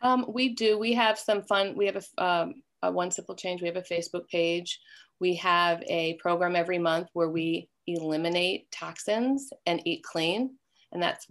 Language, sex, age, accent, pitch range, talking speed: English, female, 40-59, American, 170-200 Hz, 180 wpm